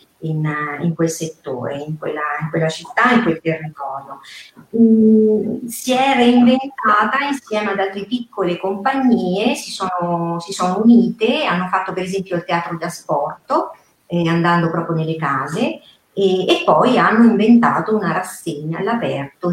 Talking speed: 135 wpm